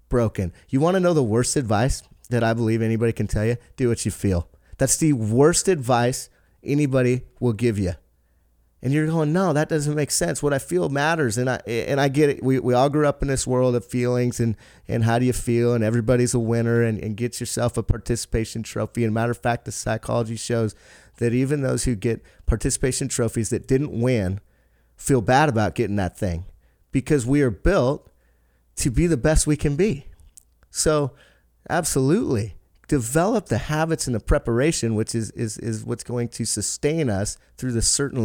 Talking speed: 200 wpm